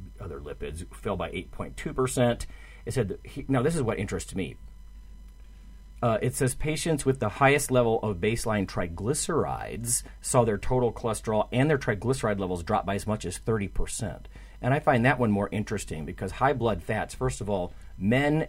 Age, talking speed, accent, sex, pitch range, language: 40-59, 170 wpm, American, male, 85-120 Hz, English